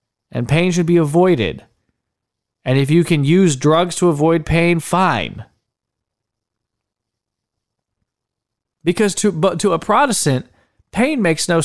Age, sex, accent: 40-59, male, American